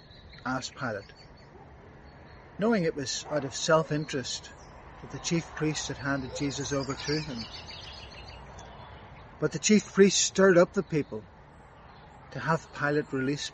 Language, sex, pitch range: English, male, 130-170 Hz